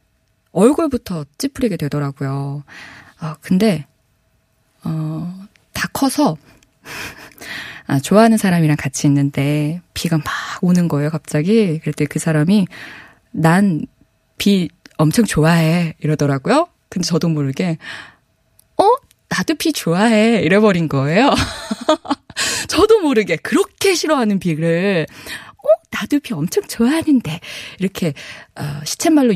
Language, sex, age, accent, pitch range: Korean, female, 20-39, native, 155-240 Hz